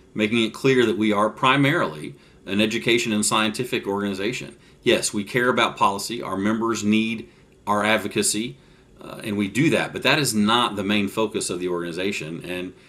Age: 40-59